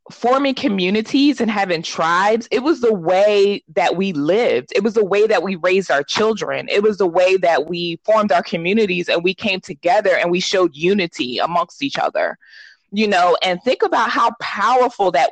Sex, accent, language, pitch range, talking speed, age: female, American, English, 180-230 Hz, 190 wpm, 20-39